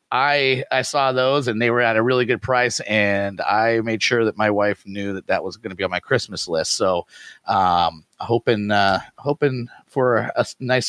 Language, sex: English, male